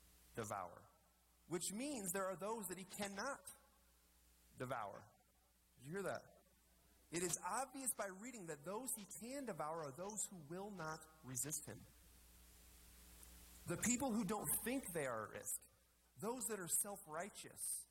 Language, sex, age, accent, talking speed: English, male, 30-49, American, 145 wpm